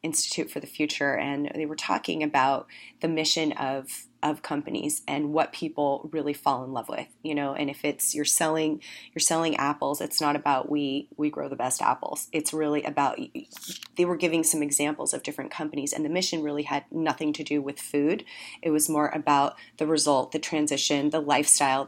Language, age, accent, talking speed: English, 30-49, American, 195 wpm